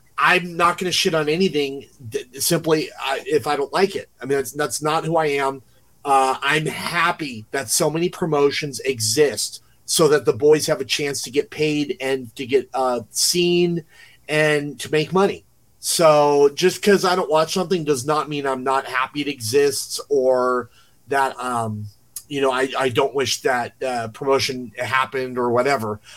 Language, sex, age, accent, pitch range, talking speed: English, male, 30-49, American, 130-155 Hz, 180 wpm